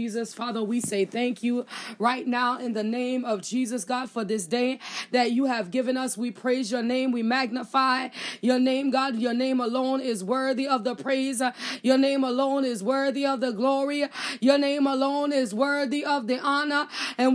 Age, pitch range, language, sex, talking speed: 20-39, 270-330 Hz, English, female, 195 wpm